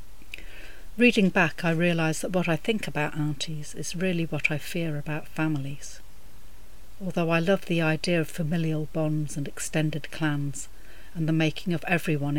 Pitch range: 140-170 Hz